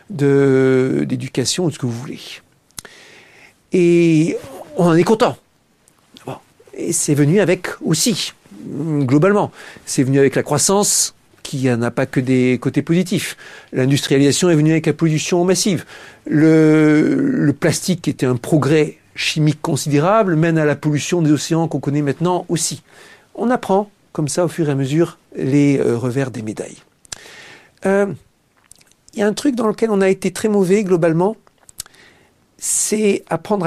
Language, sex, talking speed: French, male, 155 wpm